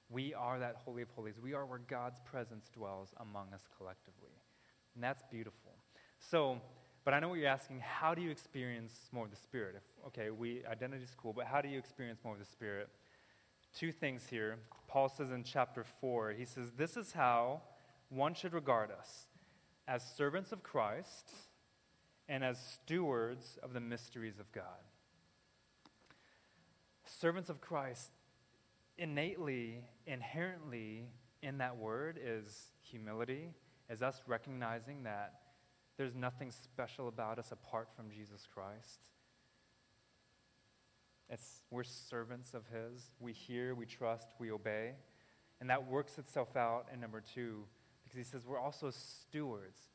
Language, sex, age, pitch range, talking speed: English, male, 20-39, 115-135 Hz, 150 wpm